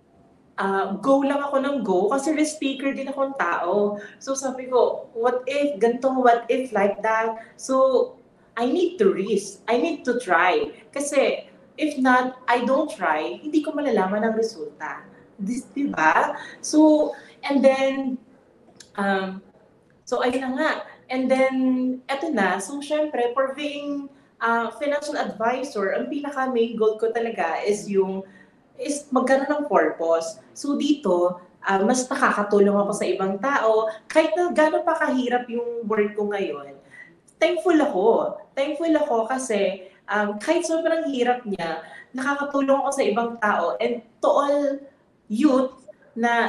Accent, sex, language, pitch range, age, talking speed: Filipino, female, English, 205-280 Hz, 30-49, 140 wpm